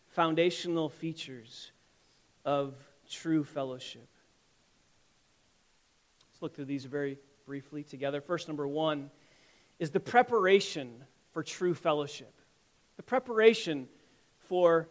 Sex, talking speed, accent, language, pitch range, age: male, 95 wpm, American, English, 160-200 Hz, 30-49